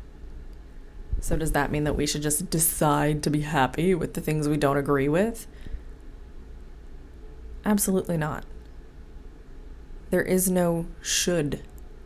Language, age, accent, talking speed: English, 20-39, American, 125 wpm